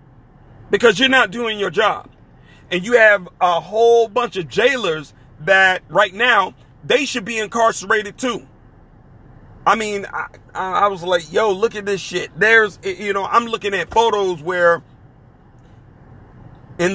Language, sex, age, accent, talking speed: English, male, 40-59, American, 150 wpm